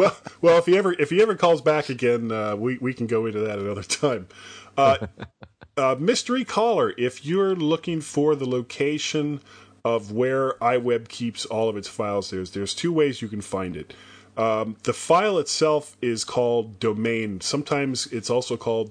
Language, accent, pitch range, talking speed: English, American, 105-135 Hz, 180 wpm